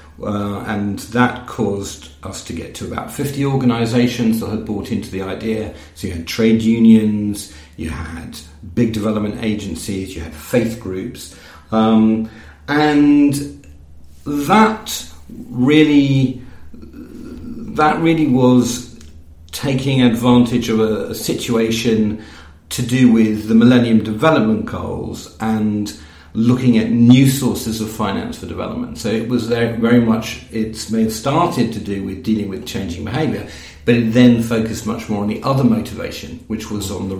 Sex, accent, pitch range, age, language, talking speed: male, British, 100-120 Hz, 50-69, English, 140 wpm